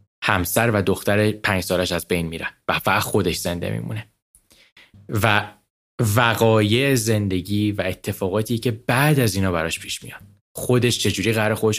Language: Persian